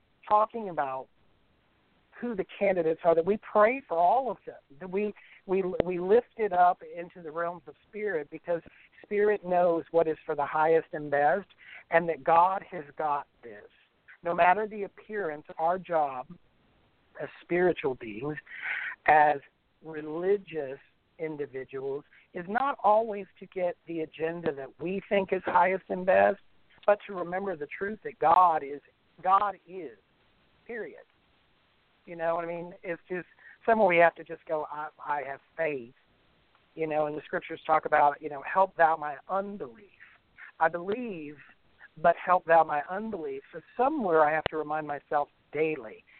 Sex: male